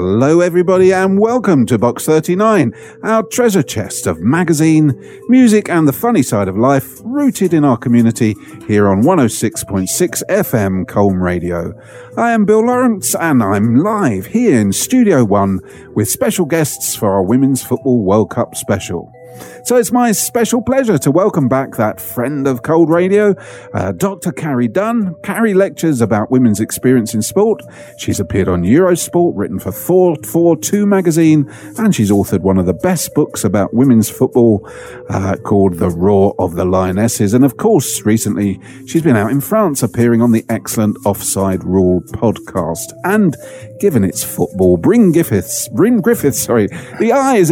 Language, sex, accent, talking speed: English, male, British, 160 wpm